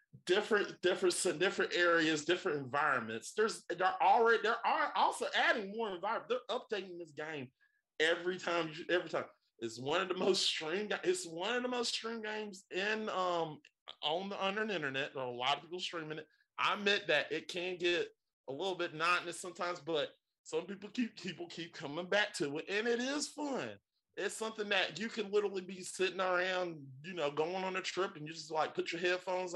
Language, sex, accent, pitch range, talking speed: English, male, American, 170-225 Hz, 200 wpm